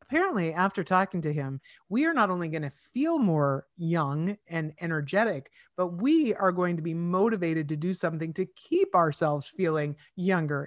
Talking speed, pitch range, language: 175 wpm, 155-215 Hz, English